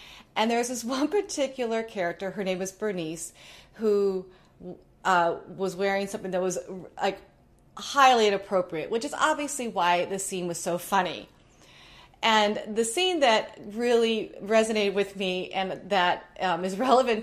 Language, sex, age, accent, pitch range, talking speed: English, female, 30-49, American, 180-235 Hz, 145 wpm